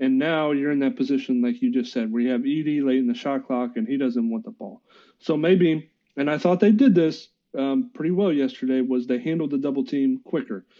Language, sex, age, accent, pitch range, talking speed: English, male, 40-59, American, 130-170 Hz, 245 wpm